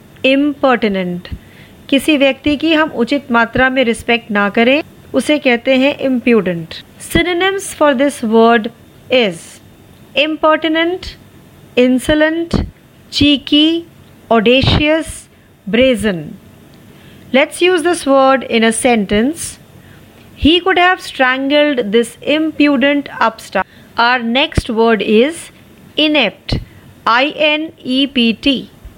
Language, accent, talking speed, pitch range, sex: Marathi, native, 90 wpm, 235-305 Hz, female